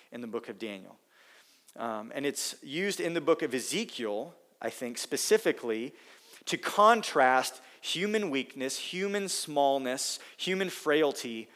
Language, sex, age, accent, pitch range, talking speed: English, male, 40-59, American, 125-165 Hz, 130 wpm